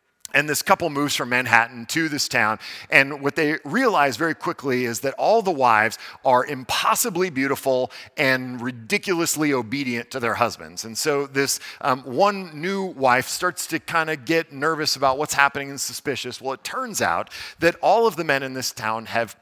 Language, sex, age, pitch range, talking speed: English, male, 40-59, 130-175 Hz, 185 wpm